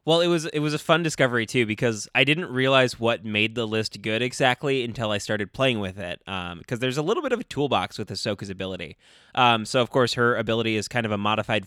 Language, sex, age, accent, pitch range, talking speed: English, male, 20-39, American, 100-125 Hz, 245 wpm